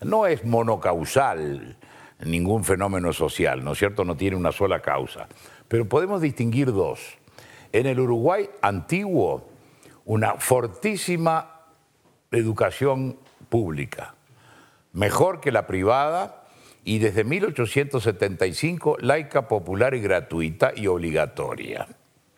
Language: Spanish